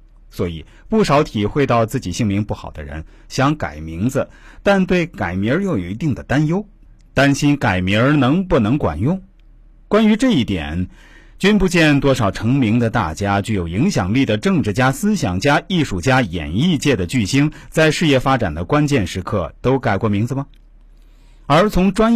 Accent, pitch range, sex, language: native, 100-155 Hz, male, Chinese